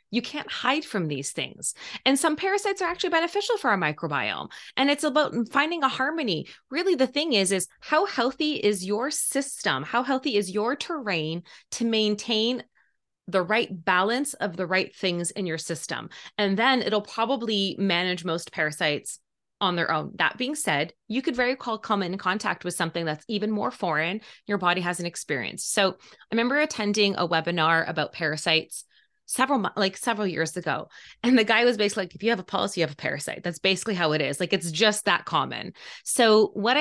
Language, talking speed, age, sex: English, 195 wpm, 20-39, female